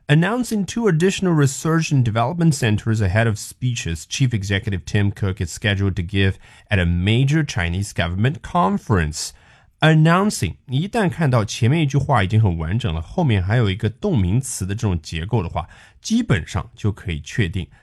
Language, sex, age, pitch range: Chinese, male, 30-49, 100-150 Hz